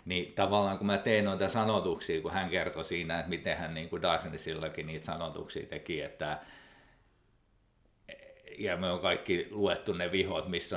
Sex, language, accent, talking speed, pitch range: male, Finnish, native, 160 wpm, 90-105 Hz